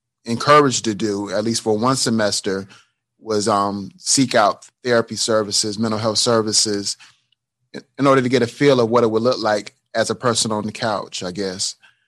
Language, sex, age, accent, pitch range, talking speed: English, male, 30-49, American, 105-125 Hz, 185 wpm